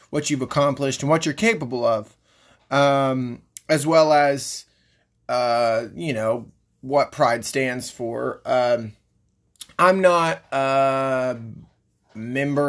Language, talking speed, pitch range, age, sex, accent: English, 115 wpm, 120-160 Hz, 30-49, male, American